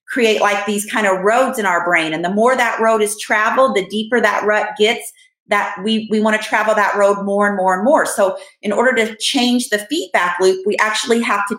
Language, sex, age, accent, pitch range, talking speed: English, female, 40-59, American, 195-245 Hz, 240 wpm